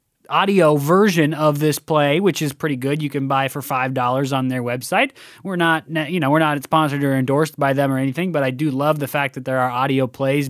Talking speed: 240 wpm